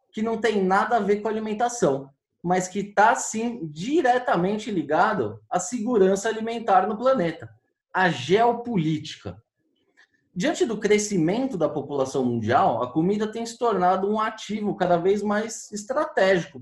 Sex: male